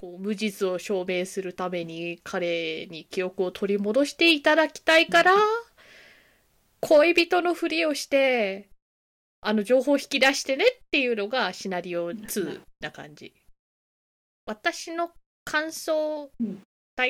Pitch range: 190-320 Hz